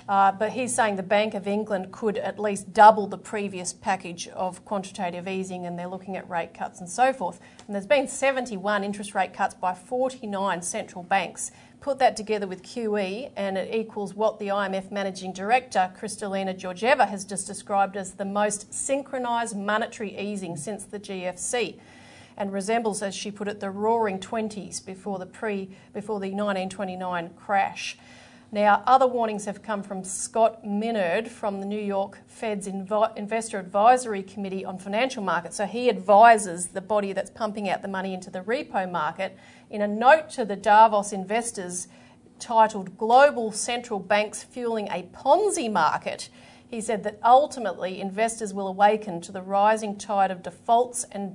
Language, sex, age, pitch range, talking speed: English, female, 40-59, 195-220 Hz, 165 wpm